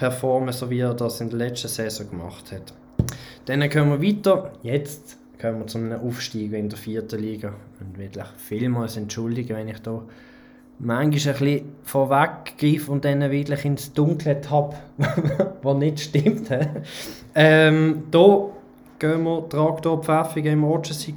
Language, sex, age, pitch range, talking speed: German, male, 20-39, 130-190 Hz, 145 wpm